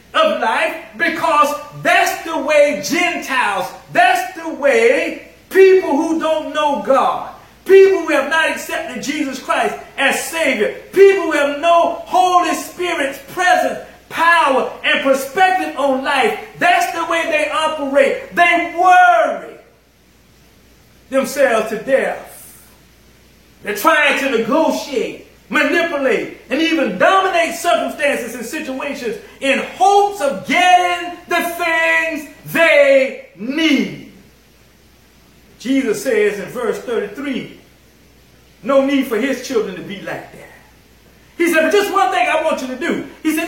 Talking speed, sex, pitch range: 125 wpm, male, 275-355 Hz